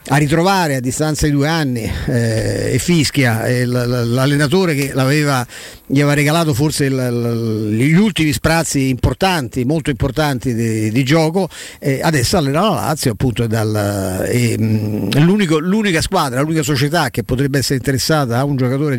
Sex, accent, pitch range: male, native, 120-145 Hz